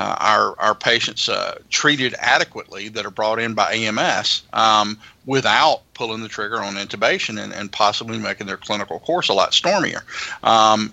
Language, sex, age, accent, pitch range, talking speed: English, male, 40-59, American, 105-120 Hz, 170 wpm